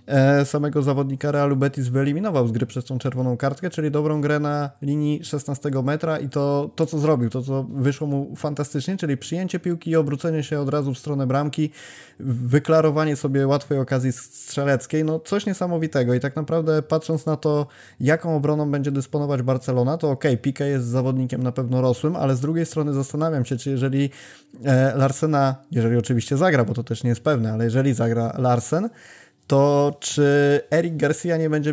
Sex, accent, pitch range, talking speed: male, native, 130-150 Hz, 180 wpm